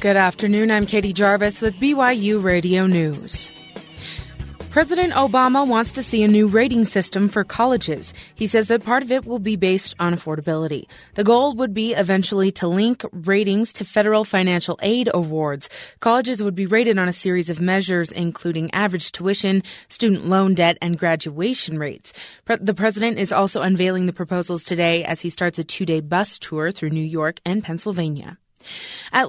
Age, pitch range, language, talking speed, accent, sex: 20-39, 170-220 Hz, English, 170 wpm, American, female